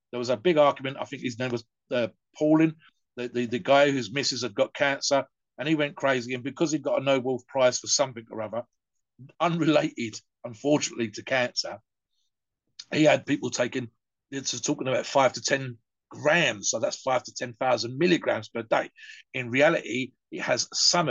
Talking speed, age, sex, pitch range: 180 wpm, 50-69, male, 130-165 Hz